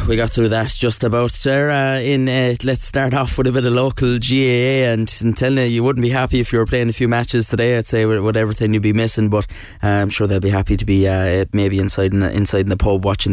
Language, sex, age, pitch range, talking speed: English, male, 20-39, 100-115 Hz, 280 wpm